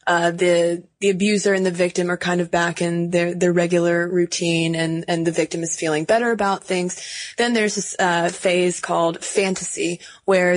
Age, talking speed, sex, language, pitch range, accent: 20-39, 185 wpm, female, English, 170-185 Hz, American